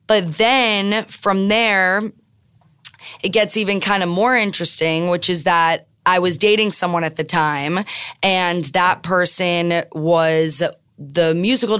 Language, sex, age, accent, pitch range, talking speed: English, female, 20-39, American, 165-200 Hz, 135 wpm